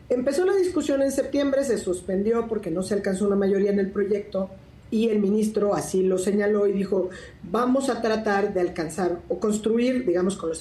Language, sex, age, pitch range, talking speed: Spanish, female, 40-59, 175-225 Hz, 190 wpm